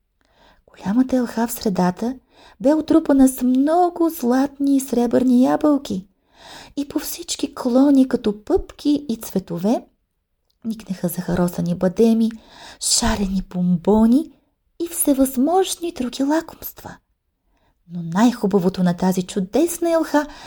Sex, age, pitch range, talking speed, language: female, 30-49, 195-300 Hz, 105 wpm, English